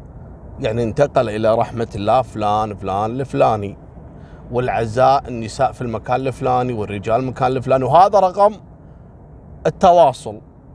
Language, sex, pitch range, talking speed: Arabic, male, 110-155 Hz, 105 wpm